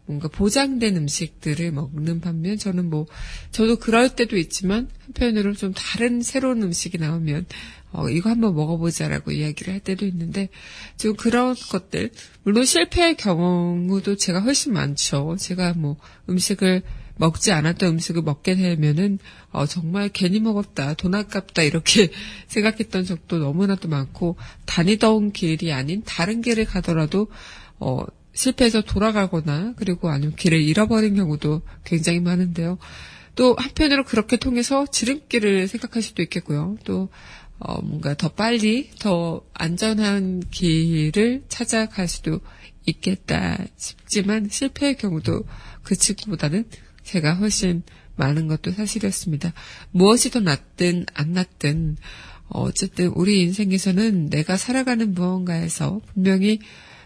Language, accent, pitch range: Korean, native, 165-215 Hz